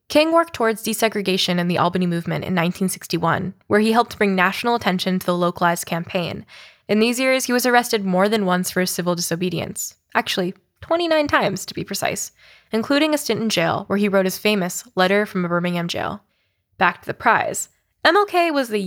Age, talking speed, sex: 10-29, 185 wpm, female